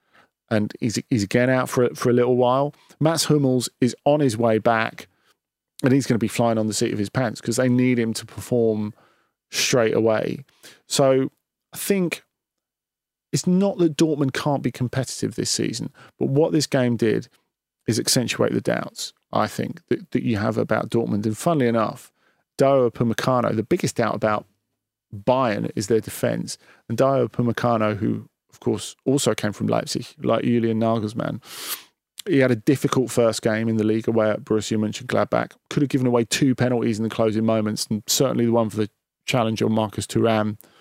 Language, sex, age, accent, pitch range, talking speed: English, male, 40-59, British, 110-135 Hz, 185 wpm